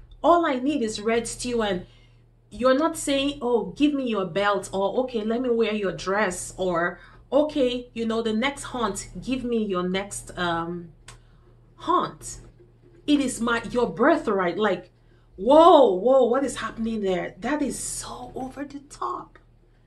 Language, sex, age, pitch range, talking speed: English, female, 30-49, 180-245 Hz, 160 wpm